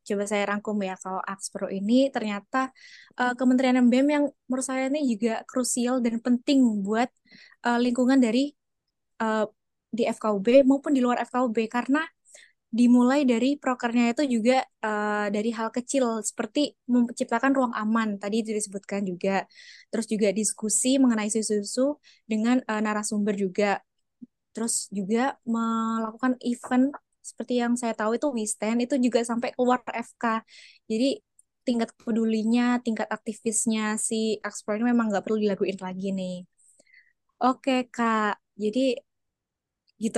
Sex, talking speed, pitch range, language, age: female, 135 wpm, 215-250 Hz, Indonesian, 20-39